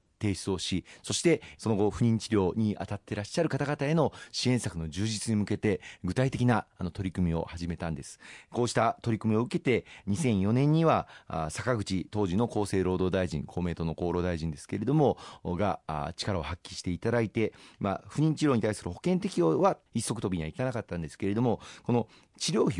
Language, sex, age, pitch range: Japanese, male, 40-59, 90-120 Hz